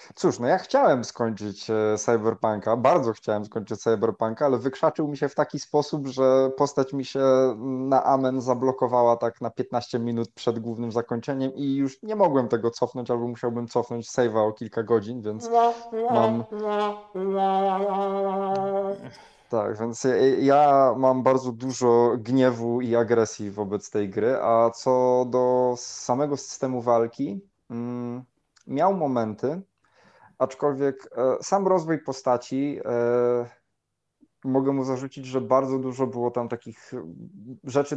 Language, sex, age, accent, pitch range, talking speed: Polish, male, 20-39, native, 115-135 Hz, 130 wpm